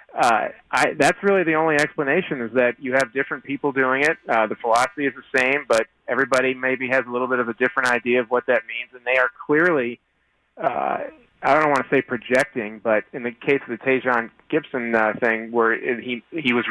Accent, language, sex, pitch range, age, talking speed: American, English, male, 115-140 Hz, 30-49, 220 wpm